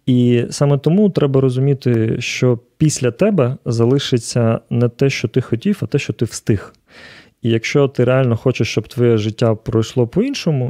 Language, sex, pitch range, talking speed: Ukrainian, male, 110-130 Hz, 165 wpm